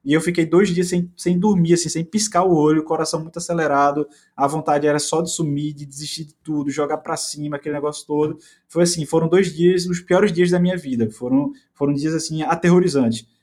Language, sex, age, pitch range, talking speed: Portuguese, male, 20-39, 140-165 Hz, 220 wpm